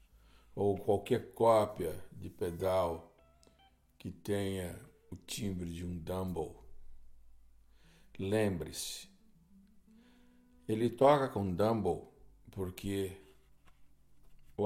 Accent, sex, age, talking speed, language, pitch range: Brazilian, male, 60-79, 80 wpm, Portuguese, 85-105 Hz